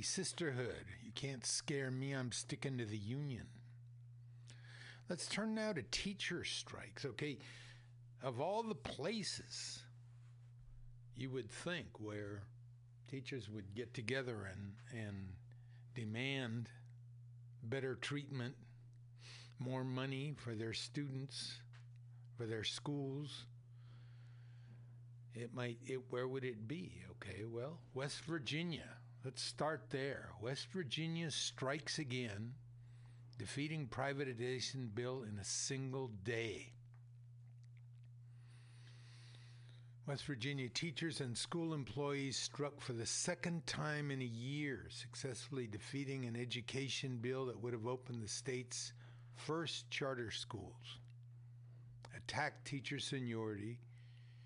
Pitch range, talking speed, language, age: 120-135 Hz, 110 wpm, English, 60-79